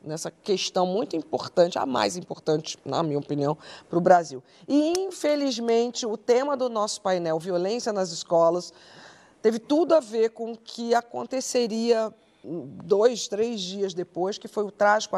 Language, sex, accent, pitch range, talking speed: Portuguese, female, Brazilian, 175-230 Hz, 155 wpm